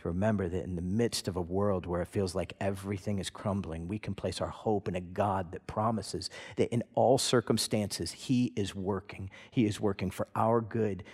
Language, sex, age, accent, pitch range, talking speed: English, male, 40-59, American, 100-150 Hz, 210 wpm